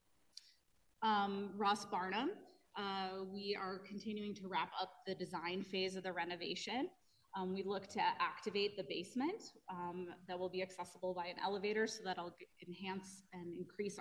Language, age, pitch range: English, 30-49, 180-205 Hz